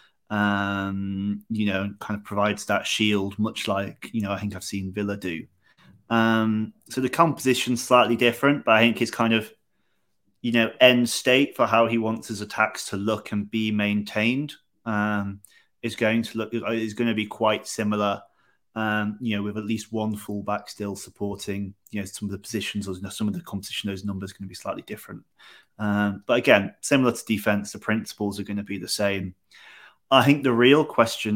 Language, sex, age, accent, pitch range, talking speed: English, male, 30-49, British, 100-115 Hz, 205 wpm